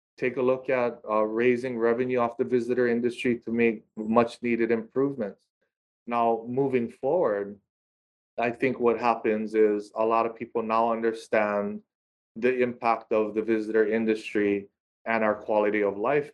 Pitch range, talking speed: 110-120 Hz, 150 wpm